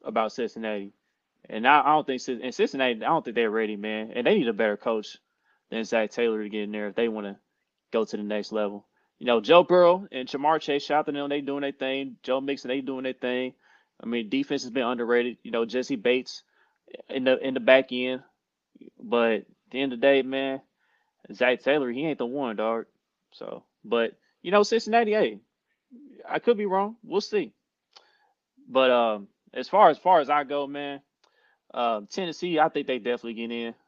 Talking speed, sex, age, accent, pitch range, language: 205 wpm, male, 20-39, American, 115-150 Hz, English